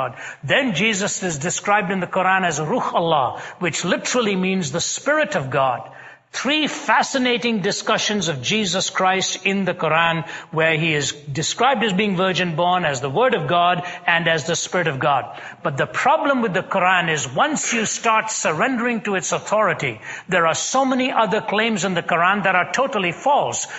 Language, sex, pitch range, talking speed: English, male, 165-215 Hz, 180 wpm